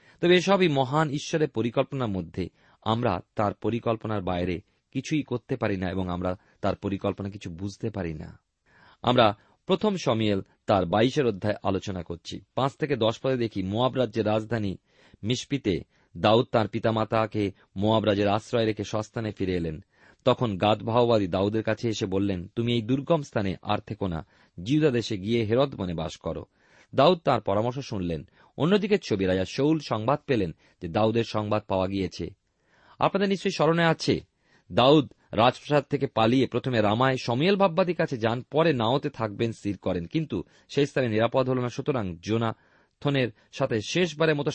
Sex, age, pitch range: male, 40-59, 100-135 Hz